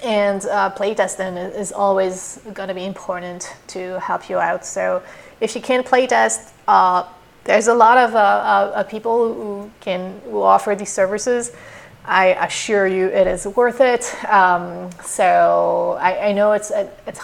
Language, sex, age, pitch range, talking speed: English, female, 30-49, 185-225 Hz, 160 wpm